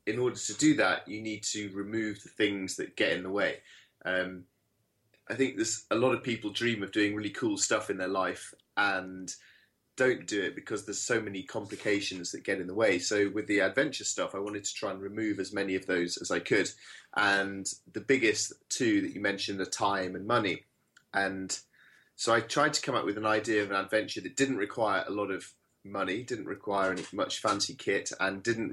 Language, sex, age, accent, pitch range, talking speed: English, male, 20-39, British, 95-110 Hz, 215 wpm